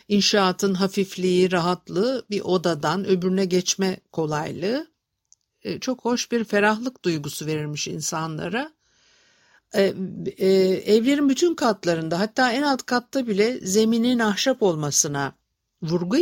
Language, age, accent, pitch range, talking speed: Turkish, 60-79, native, 180-235 Hz, 100 wpm